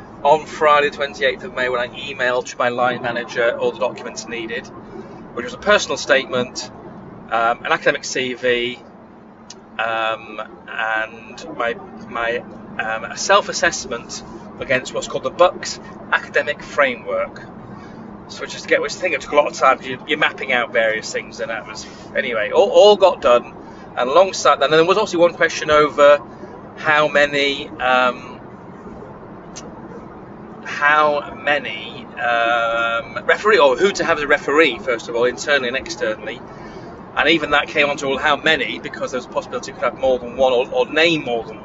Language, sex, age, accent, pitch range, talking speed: English, male, 30-49, British, 125-160 Hz, 175 wpm